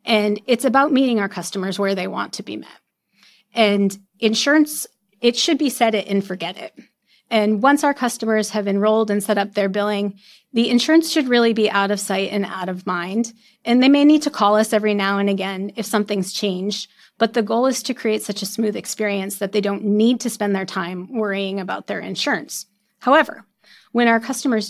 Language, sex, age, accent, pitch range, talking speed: English, female, 30-49, American, 195-225 Hz, 205 wpm